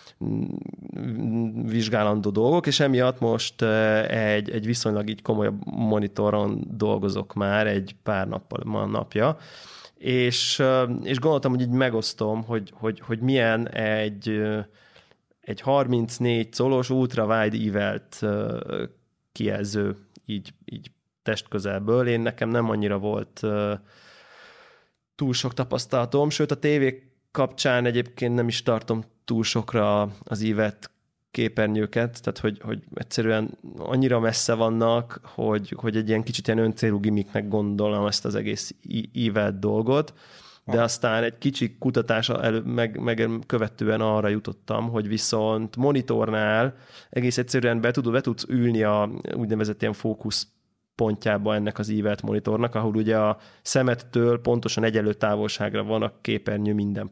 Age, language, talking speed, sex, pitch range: 20-39, Hungarian, 125 wpm, male, 110-120 Hz